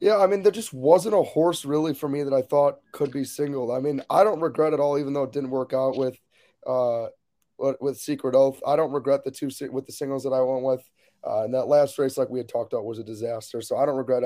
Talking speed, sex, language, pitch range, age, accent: 270 wpm, male, English, 130-145 Hz, 20-39, American